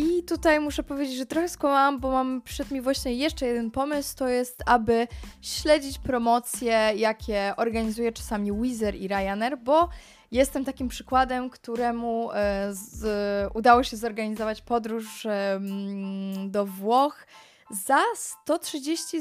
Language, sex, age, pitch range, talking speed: Polish, female, 20-39, 215-280 Hz, 125 wpm